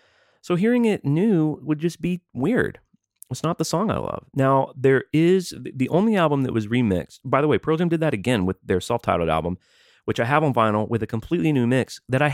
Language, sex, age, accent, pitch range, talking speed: English, male, 30-49, American, 90-135 Hz, 230 wpm